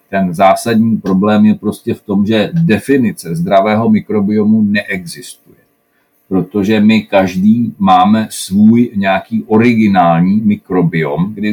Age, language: 50-69, Czech